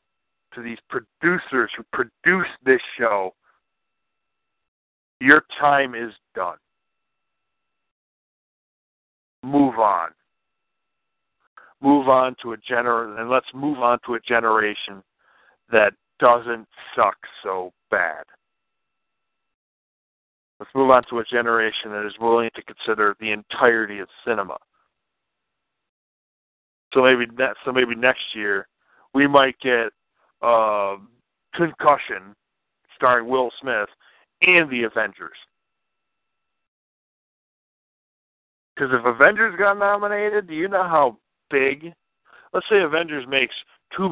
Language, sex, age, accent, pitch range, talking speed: English, male, 50-69, American, 115-145 Hz, 105 wpm